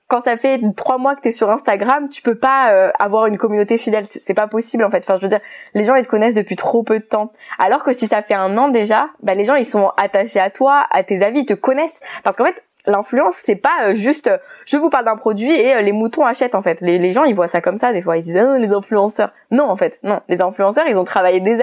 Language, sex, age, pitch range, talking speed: French, female, 20-39, 200-270 Hz, 290 wpm